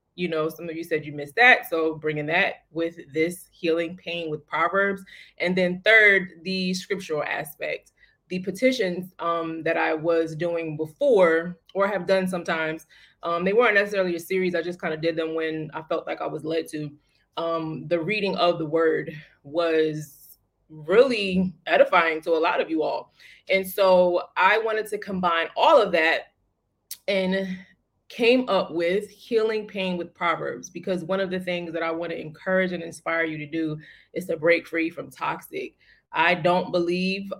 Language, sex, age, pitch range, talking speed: English, female, 20-39, 160-185 Hz, 180 wpm